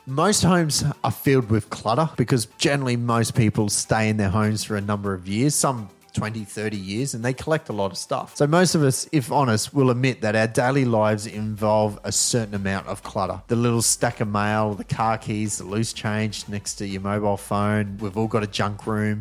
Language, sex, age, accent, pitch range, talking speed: English, male, 30-49, Australian, 105-130 Hz, 220 wpm